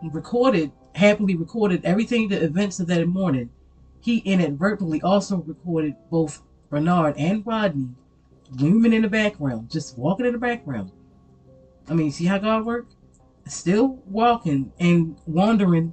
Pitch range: 150-215 Hz